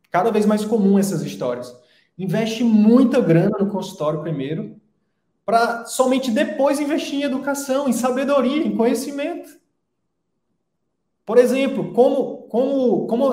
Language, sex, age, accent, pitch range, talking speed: Portuguese, male, 20-39, Brazilian, 185-245 Hz, 115 wpm